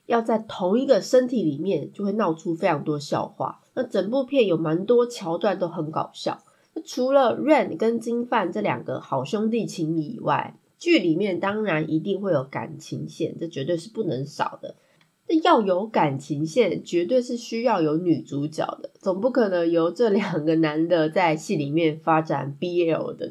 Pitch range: 160-235 Hz